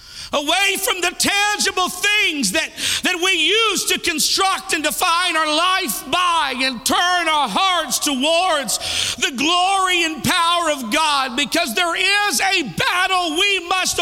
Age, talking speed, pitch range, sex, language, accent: 50-69, 145 wpm, 250-360 Hz, male, English, American